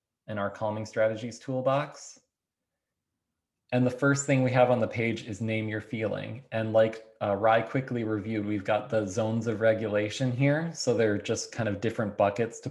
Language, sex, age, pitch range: English, male, 20-39, 105-130 Hz